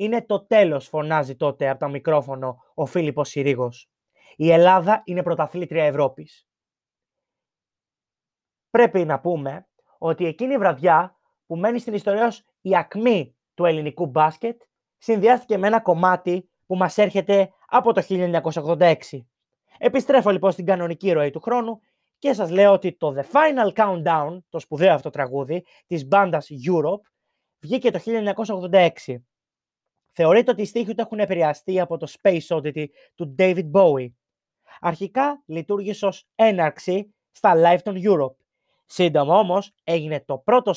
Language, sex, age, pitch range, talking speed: Greek, male, 20-39, 160-205 Hz, 140 wpm